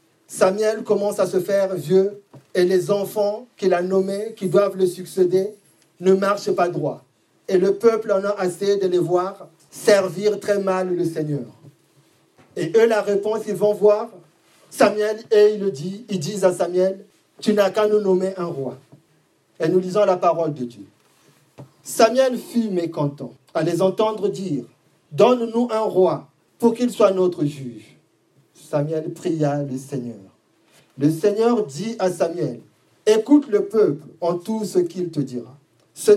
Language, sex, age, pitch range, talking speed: French, male, 50-69, 160-215 Hz, 160 wpm